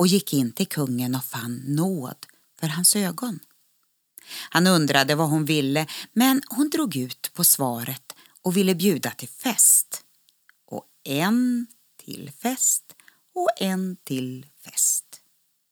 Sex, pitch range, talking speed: female, 140-195 Hz, 135 wpm